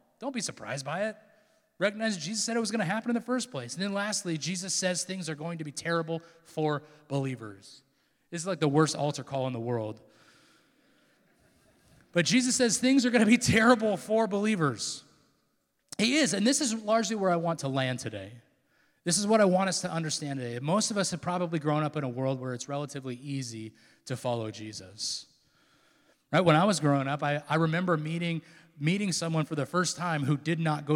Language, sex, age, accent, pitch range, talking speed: English, male, 30-49, American, 140-210 Hz, 210 wpm